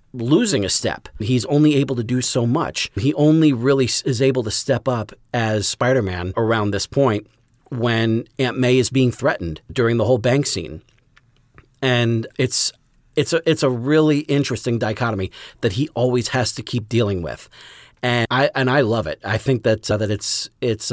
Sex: male